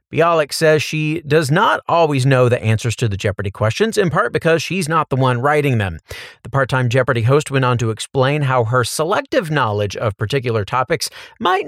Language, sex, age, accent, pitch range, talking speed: English, male, 40-59, American, 120-160 Hz, 195 wpm